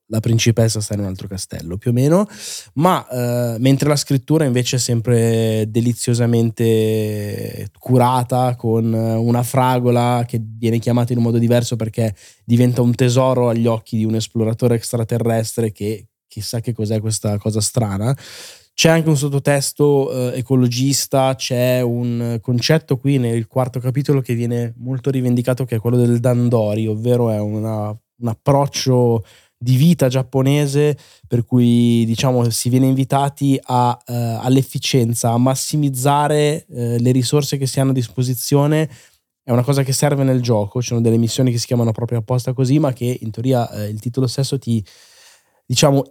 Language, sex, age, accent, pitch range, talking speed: Italian, male, 20-39, native, 115-135 Hz, 160 wpm